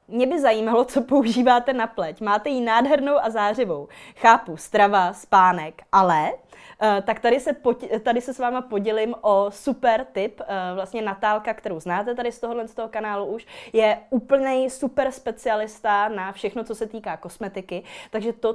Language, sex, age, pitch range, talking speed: Czech, female, 20-39, 195-230 Hz, 170 wpm